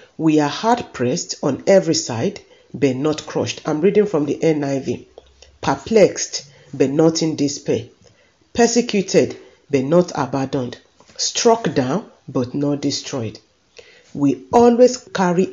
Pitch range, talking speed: 140-215 Hz, 120 wpm